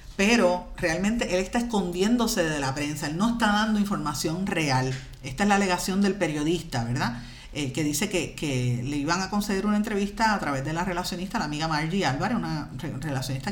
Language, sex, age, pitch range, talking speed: Spanish, female, 50-69, 150-200 Hz, 190 wpm